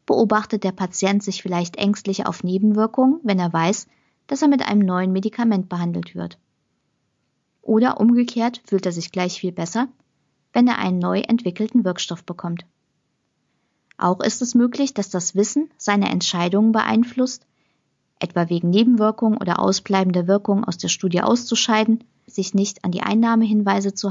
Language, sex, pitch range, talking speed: German, female, 180-225 Hz, 150 wpm